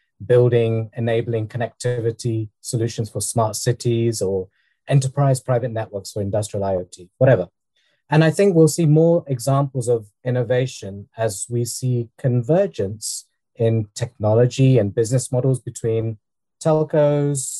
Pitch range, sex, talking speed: 110-140 Hz, male, 120 wpm